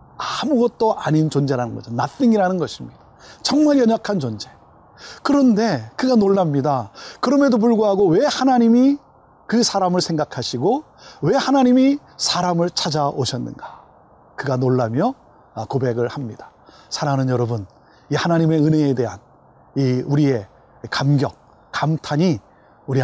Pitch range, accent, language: 130-200 Hz, native, Korean